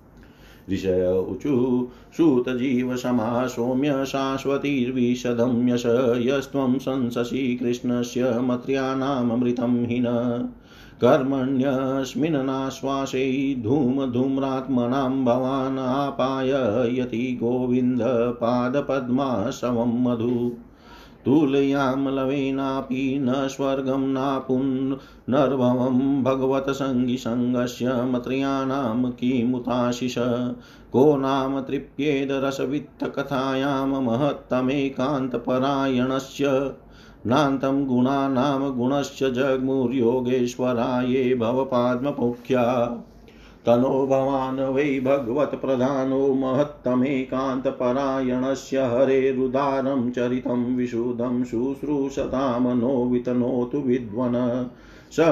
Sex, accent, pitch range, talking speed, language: male, native, 125-135 Hz, 55 wpm, Hindi